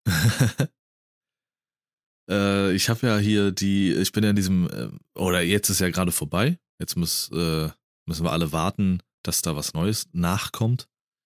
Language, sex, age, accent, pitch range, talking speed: German, male, 30-49, German, 90-105 Hz, 160 wpm